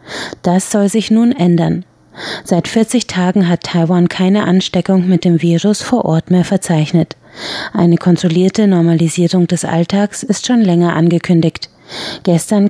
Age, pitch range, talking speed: 30-49, 175-210 Hz, 135 wpm